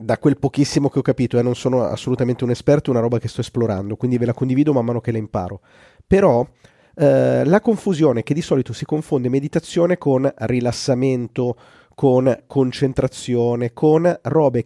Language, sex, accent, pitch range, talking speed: Italian, male, native, 120-155 Hz, 175 wpm